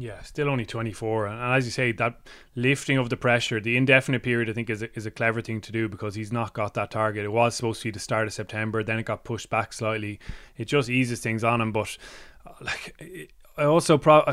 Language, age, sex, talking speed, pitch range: English, 20-39, male, 235 wpm, 110-125 Hz